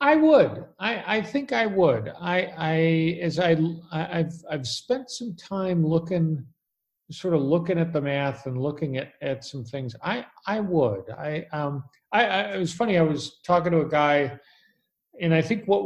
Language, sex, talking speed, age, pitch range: English, male, 185 wpm, 50-69, 130-165 Hz